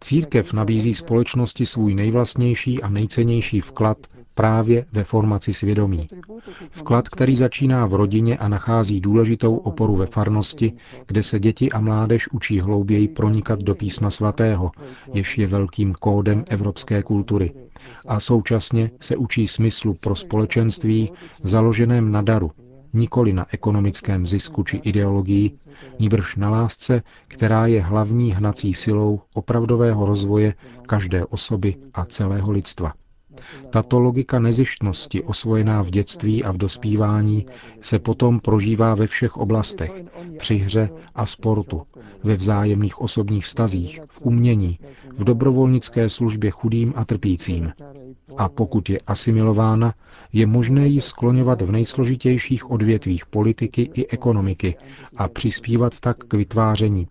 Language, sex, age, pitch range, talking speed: Czech, male, 40-59, 100-120 Hz, 125 wpm